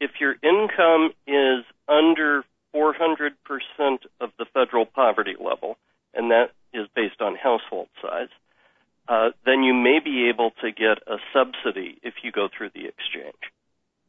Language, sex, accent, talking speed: English, male, American, 145 wpm